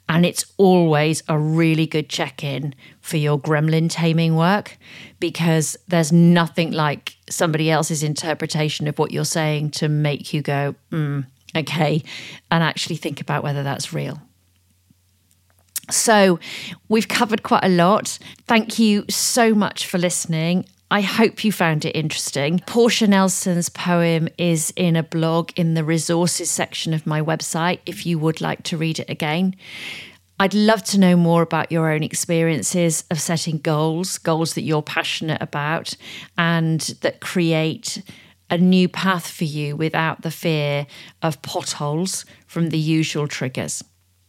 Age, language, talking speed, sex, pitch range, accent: 40-59, English, 150 wpm, female, 150-175 Hz, British